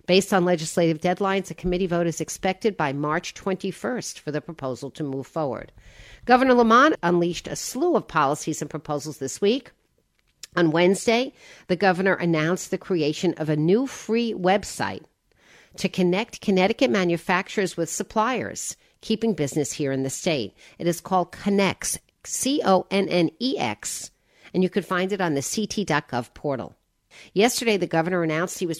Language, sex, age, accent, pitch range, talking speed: English, female, 50-69, American, 160-200 Hz, 150 wpm